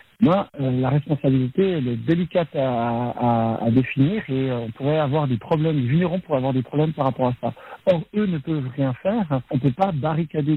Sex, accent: male, French